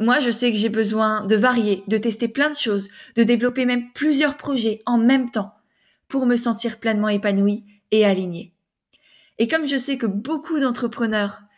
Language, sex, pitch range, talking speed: French, female, 210-245 Hz, 180 wpm